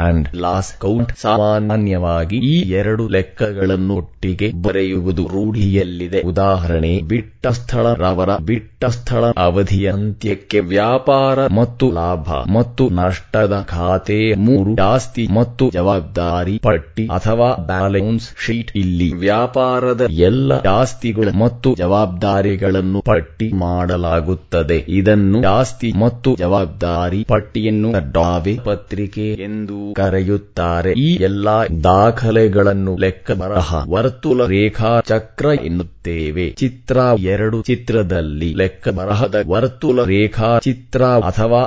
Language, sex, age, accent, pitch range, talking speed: English, male, 20-39, Indian, 90-115 Hz, 90 wpm